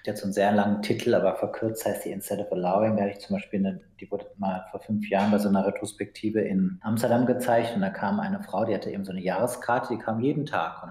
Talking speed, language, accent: 270 wpm, German, German